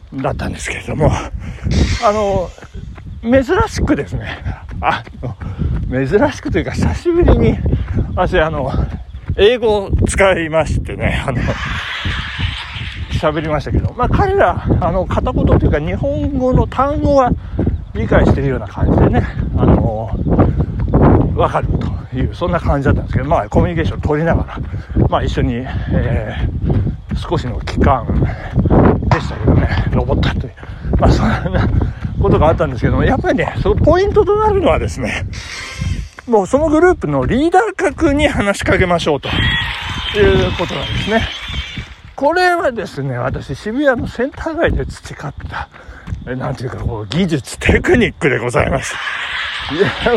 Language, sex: Japanese, male